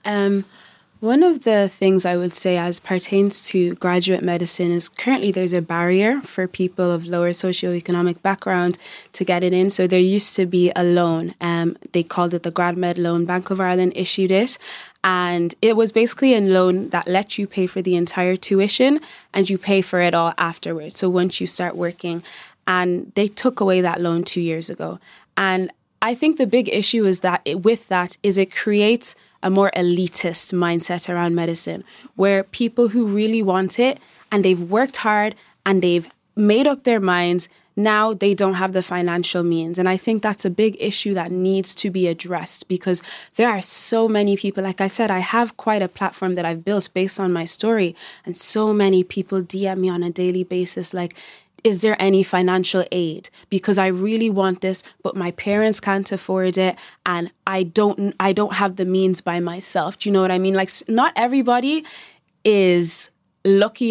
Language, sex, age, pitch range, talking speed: English, female, 20-39, 180-205 Hz, 195 wpm